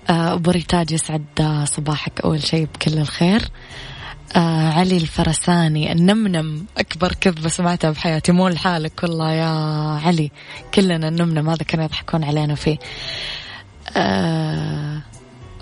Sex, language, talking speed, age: female, Arabic, 110 wpm, 20-39